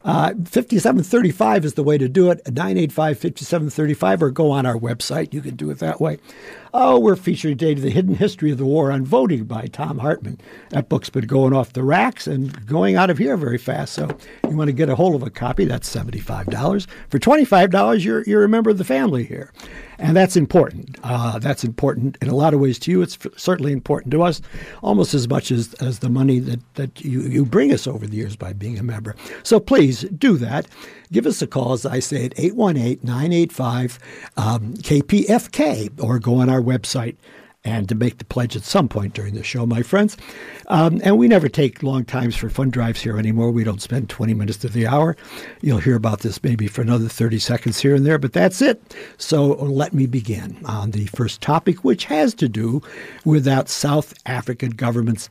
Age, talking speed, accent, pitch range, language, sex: 60-79, 210 wpm, American, 115-160 Hz, English, male